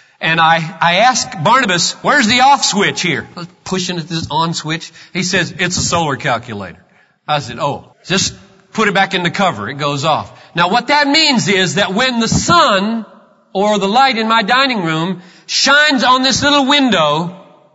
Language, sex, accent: English, male, American